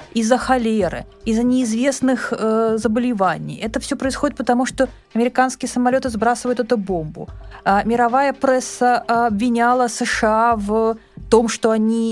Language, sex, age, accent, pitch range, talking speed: Russian, female, 20-39, native, 200-255 Hz, 125 wpm